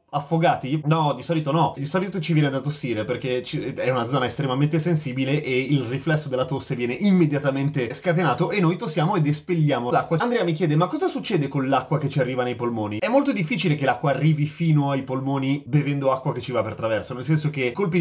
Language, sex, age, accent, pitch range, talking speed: Italian, male, 30-49, native, 130-170 Hz, 215 wpm